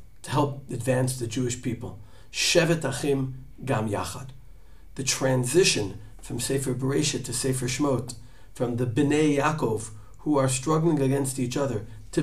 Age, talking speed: 50-69, 140 wpm